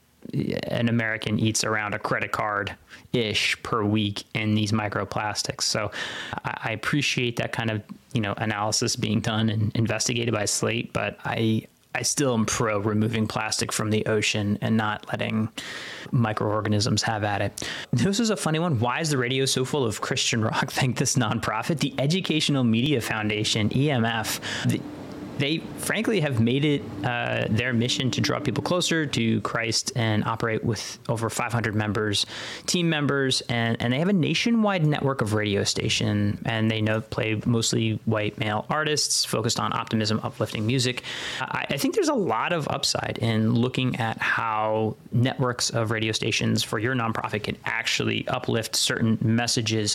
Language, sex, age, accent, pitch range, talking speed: English, male, 20-39, American, 110-130 Hz, 165 wpm